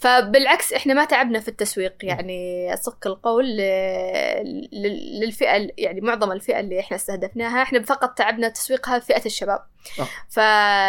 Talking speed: 130 wpm